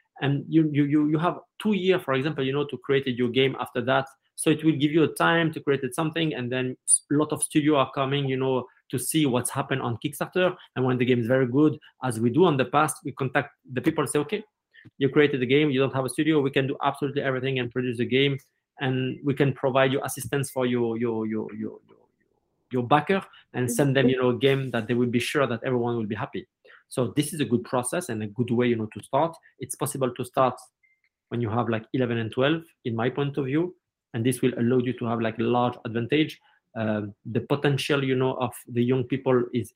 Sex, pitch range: male, 120-150 Hz